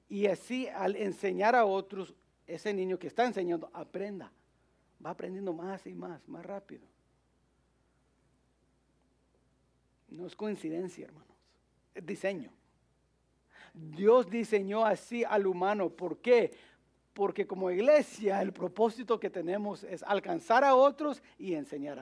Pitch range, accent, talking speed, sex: 170-220 Hz, Mexican, 125 wpm, male